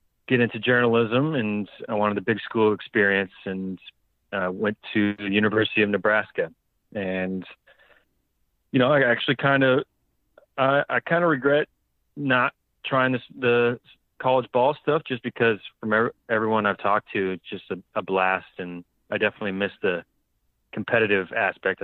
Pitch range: 100-115 Hz